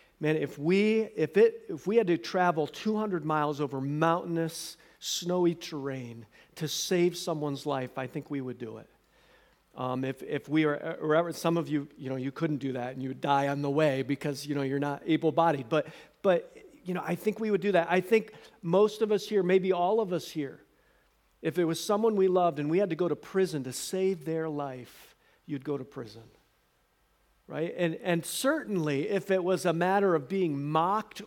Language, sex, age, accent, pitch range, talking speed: English, male, 50-69, American, 145-190 Hz, 205 wpm